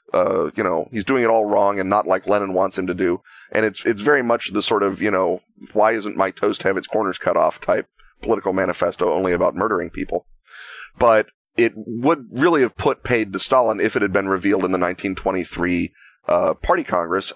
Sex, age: male, 30-49